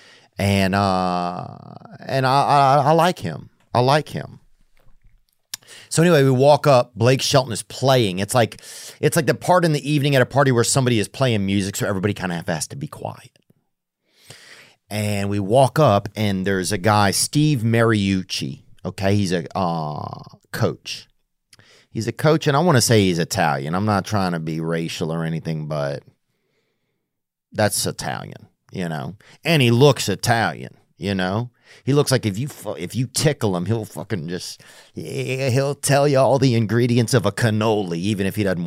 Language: English